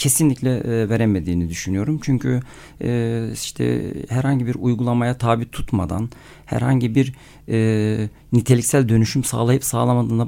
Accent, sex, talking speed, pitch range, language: native, male, 95 wpm, 110-140 Hz, Turkish